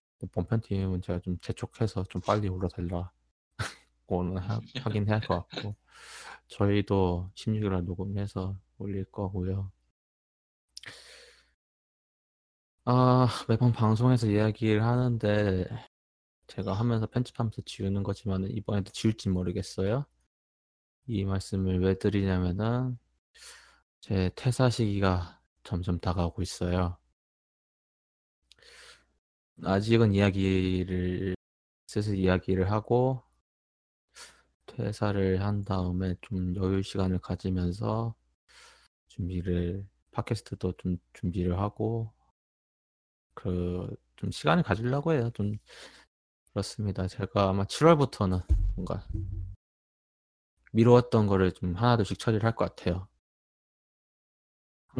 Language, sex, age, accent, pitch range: Korean, male, 20-39, native, 90-110 Hz